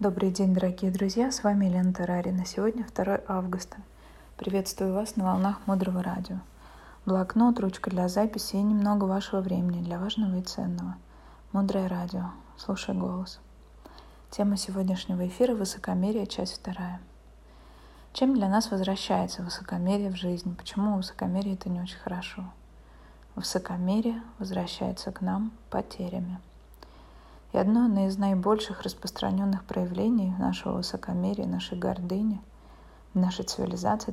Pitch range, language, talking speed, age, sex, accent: 180-205 Hz, Russian, 125 wpm, 20-39, female, native